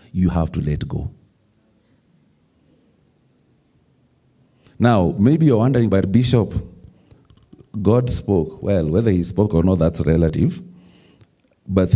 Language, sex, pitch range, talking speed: English, male, 90-120 Hz, 110 wpm